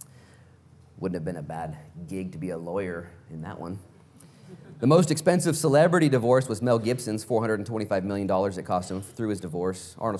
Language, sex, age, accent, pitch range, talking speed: English, male, 30-49, American, 90-125 Hz, 175 wpm